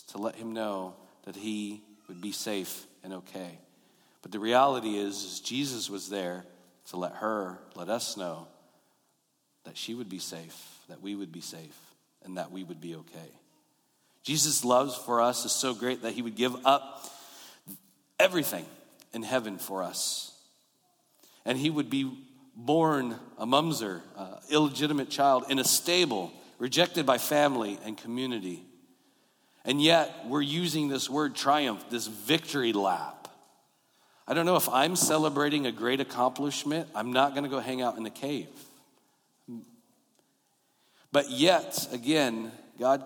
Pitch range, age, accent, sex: 110-140 Hz, 40-59, American, male